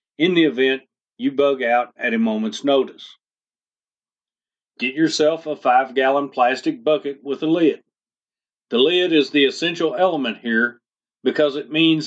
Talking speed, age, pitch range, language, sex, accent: 150 wpm, 40-59, 140-160 Hz, English, male, American